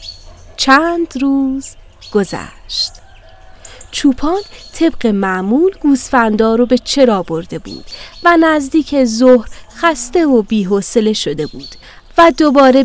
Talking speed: 105 wpm